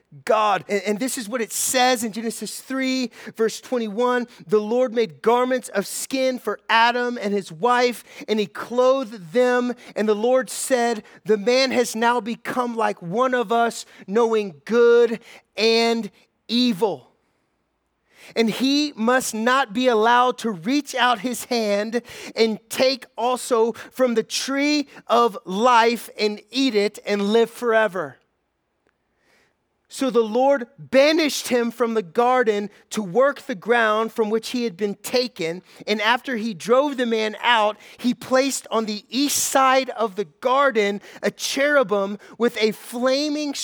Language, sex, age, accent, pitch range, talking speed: English, male, 30-49, American, 215-255 Hz, 150 wpm